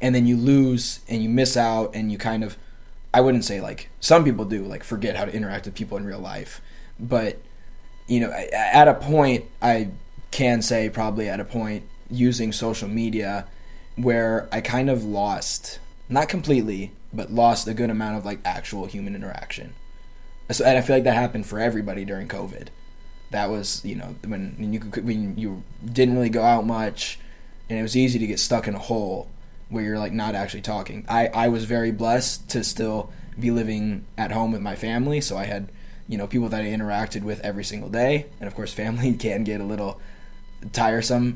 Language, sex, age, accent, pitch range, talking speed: English, male, 20-39, American, 105-120 Hz, 200 wpm